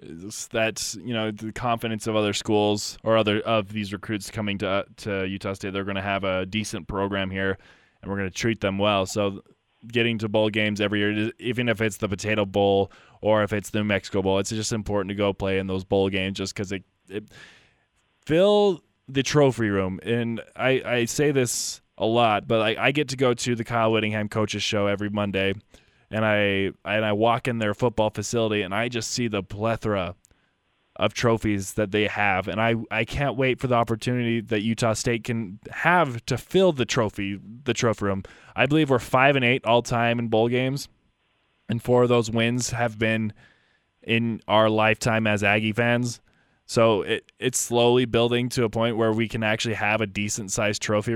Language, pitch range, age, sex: English, 100-115 Hz, 20-39, male